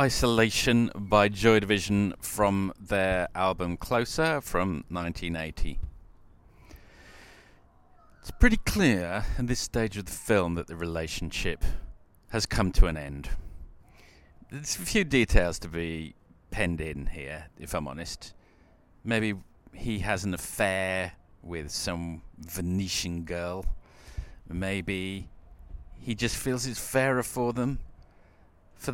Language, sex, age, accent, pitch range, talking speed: English, male, 40-59, British, 80-105 Hz, 120 wpm